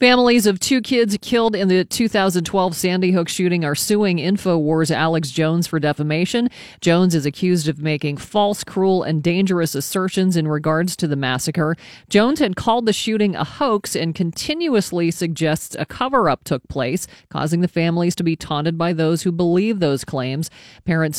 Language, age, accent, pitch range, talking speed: English, 40-59, American, 155-195 Hz, 170 wpm